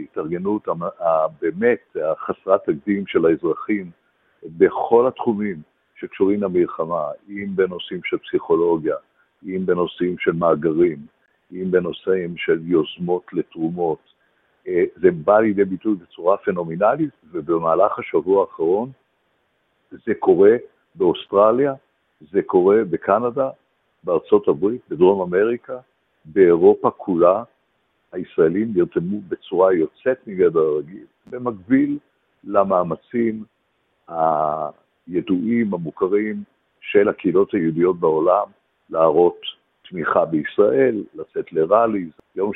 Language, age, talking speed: Hebrew, 60-79, 90 wpm